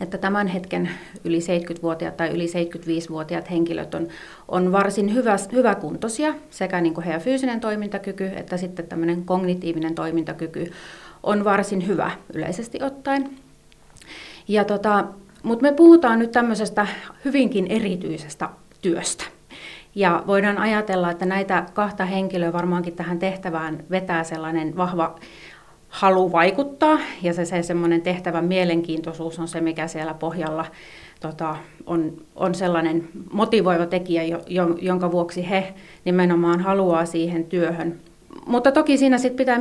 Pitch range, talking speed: 170-205 Hz, 120 wpm